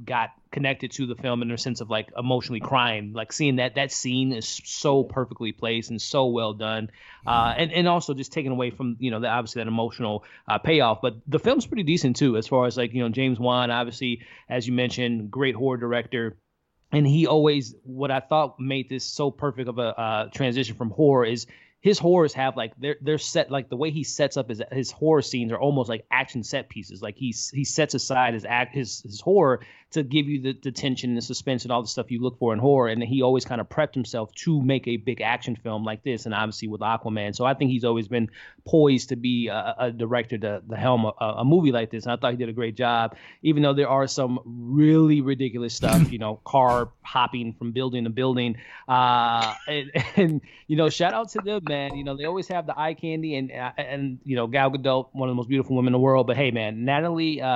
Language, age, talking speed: English, 20-39, 240 wpm